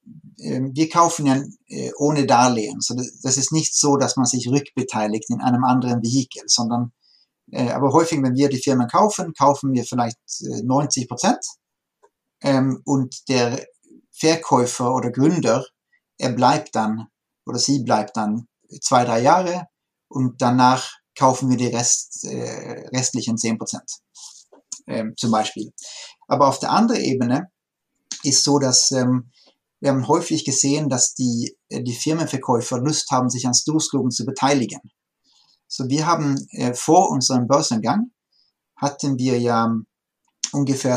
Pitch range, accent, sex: 125-145 Hz, German, male